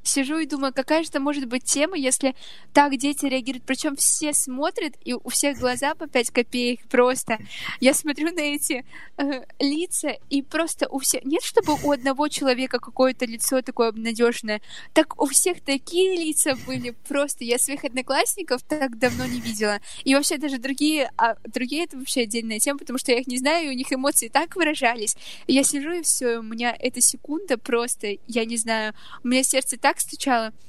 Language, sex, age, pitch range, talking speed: Russian, female, 20-39, 250-300 Hz, 190 wpm